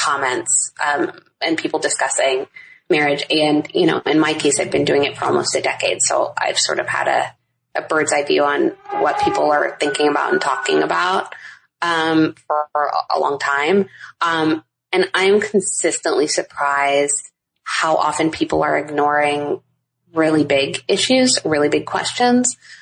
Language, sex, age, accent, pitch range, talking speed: English, female, 20-39, American, 145-195 Hz, 160 wpm